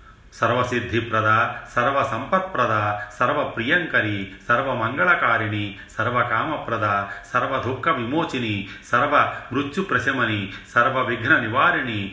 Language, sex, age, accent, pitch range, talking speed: Telugu, male, 30-49, native, 105-120 Hz, 60 wpm